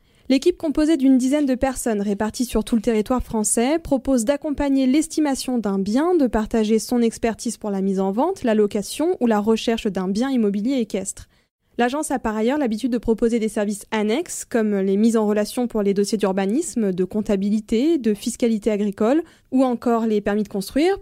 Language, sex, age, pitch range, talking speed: French, female, 20-39, 205-260 Hz, 185 wpm